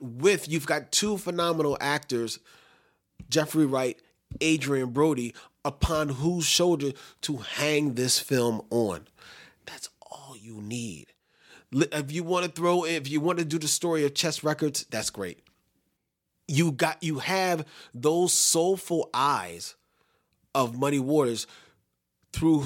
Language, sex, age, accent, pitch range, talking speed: English, male, 30-49, American, 130-165 Hz, 130 wpm